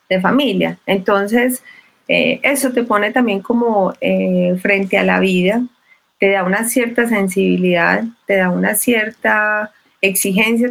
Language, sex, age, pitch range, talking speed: Spanish, female, 30-49, 185-220 Hz, 135 wpm